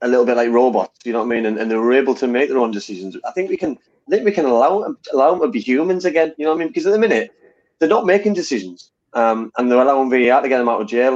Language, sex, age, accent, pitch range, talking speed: English, male, 30-49, British, 105-135 Hz, 315 wpm